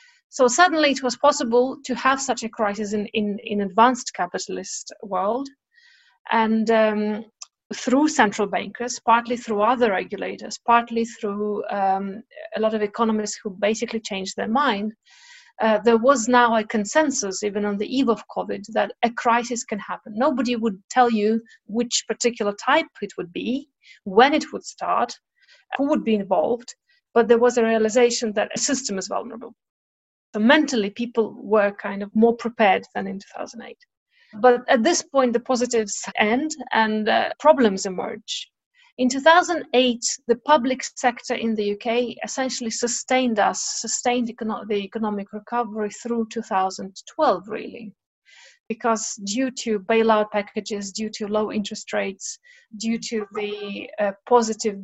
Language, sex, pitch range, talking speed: English, female, 210-250 Hz, 150 wpm